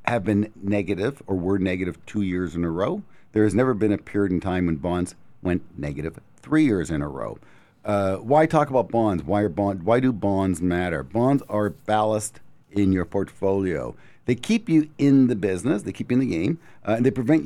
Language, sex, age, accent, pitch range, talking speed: English, male, 50-69, American, 105-140 Hz, 205 wpm